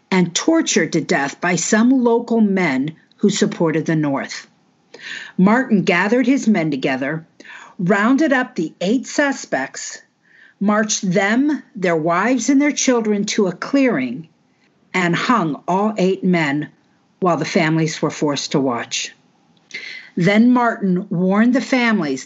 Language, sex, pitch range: English, female, 160-220 Hz